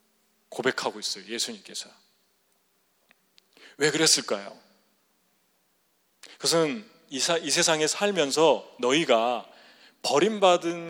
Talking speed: 60 wpm